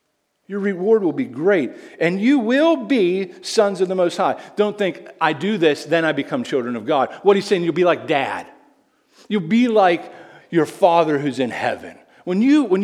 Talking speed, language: 200 wpm, English